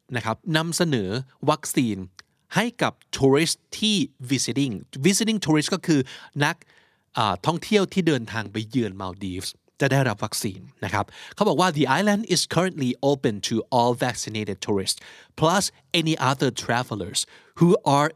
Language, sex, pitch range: Thai, male, 115-165 Hz